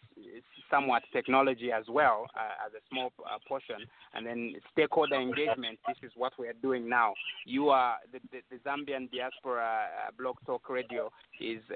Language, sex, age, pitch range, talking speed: English, male, 30-49, 120-145 Hz, 170 wpm